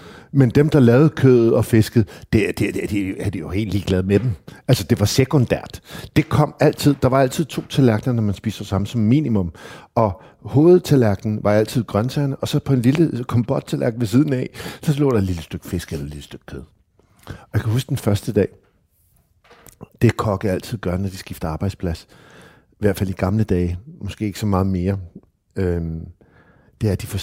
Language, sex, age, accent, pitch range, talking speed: Danish, male, 60-79, native, 95-130 Hz, 220 wpm